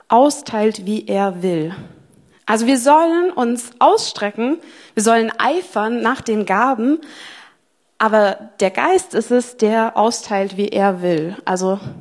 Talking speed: 130 wpm